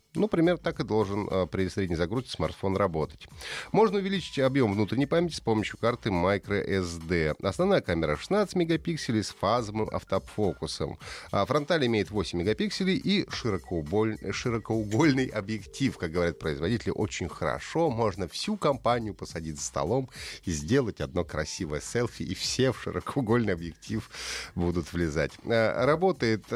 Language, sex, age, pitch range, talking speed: Russian, male, 30-49, 95-145 Hz, 135 wpm